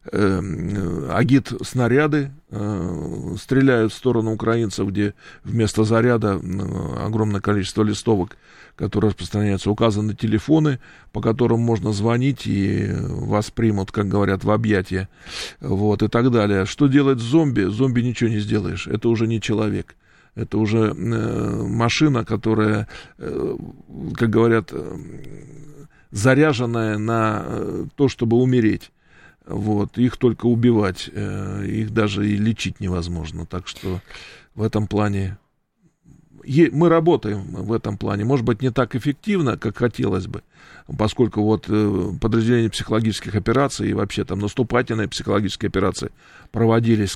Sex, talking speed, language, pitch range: male, 120 wpm, Russian, 105-120 Hz